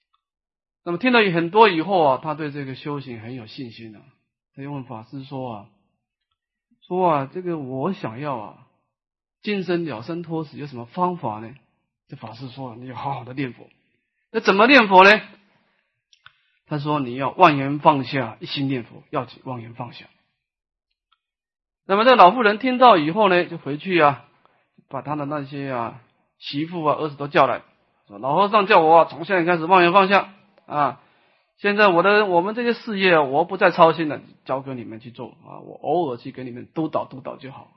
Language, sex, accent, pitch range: Chinese, male, native, 135-180 Hz